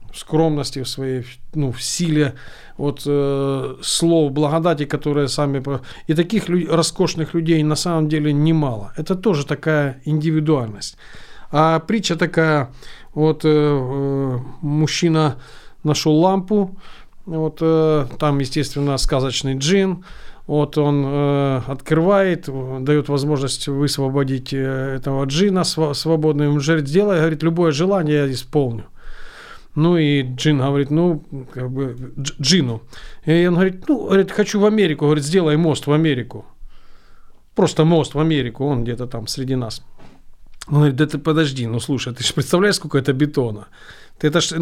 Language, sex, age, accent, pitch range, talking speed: Ukrainian, male, 40-59, native, 135-170 Hz, 140 wpm